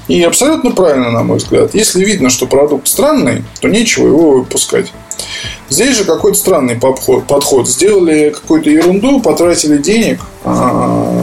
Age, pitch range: 20-39, 130-170 Hz